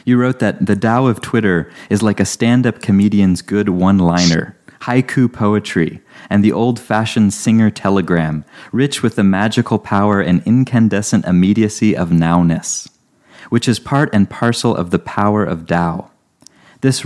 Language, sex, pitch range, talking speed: English, male, 100-120 Hz, 150 wpm